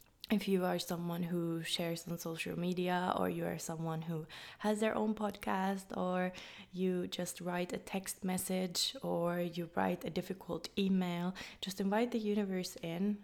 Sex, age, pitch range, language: female, 20-39, 175-195 Hz, English